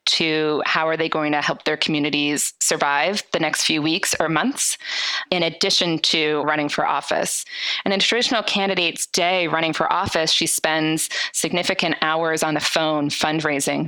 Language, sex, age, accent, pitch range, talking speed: English, female, 20-39, American, 155-180 Hz, 165 wpm